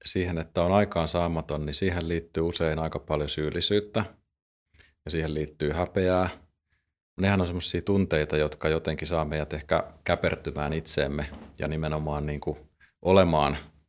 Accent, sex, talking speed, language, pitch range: native, male, 130 wpm, Finnish, 75-85 Hz